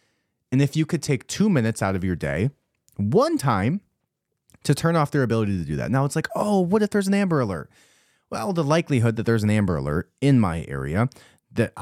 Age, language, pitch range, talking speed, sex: 20-39, English, 90-125 Hz, 220 wpm, male